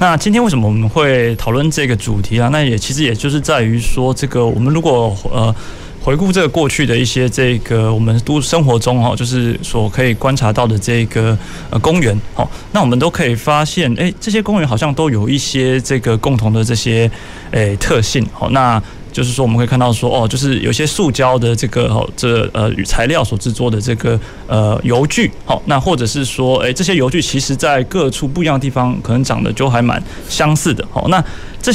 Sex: male